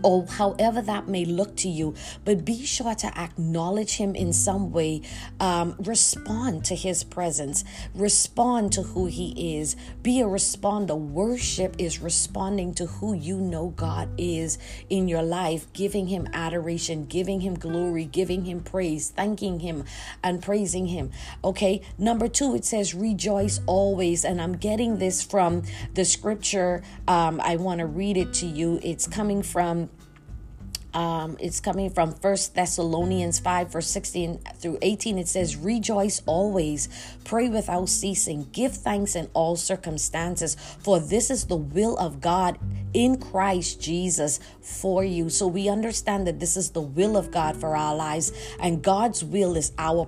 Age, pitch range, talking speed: 40-59, 165-195 Hz, 160 wpm